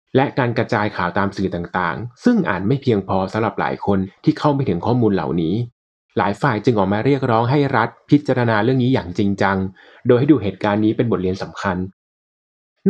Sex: male